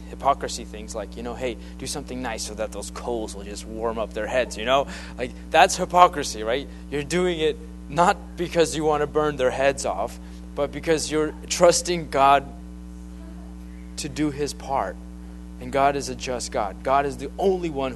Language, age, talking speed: English, 20-39, 190 wpm